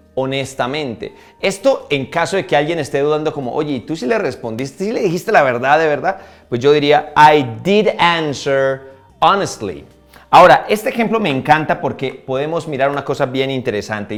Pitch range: 120-155 Hz